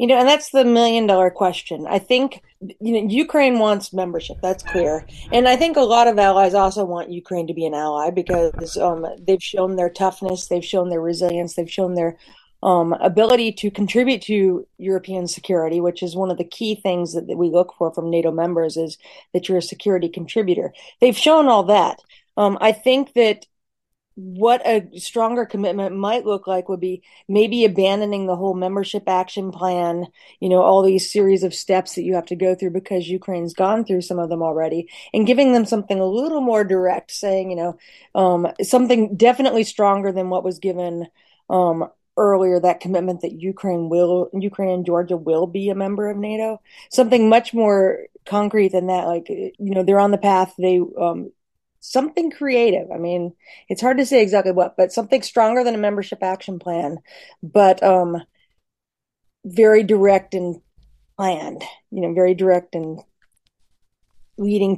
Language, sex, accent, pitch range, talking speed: English, female, American, 180-215 Hz, 180 wpm